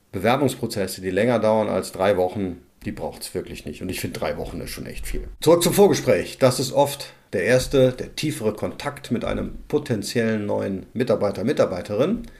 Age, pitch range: 40-59, 115-140 Hz